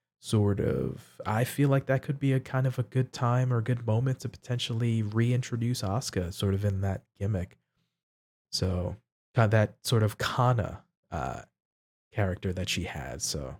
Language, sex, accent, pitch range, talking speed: English, male, American, 105-125 Hz, 165 wpm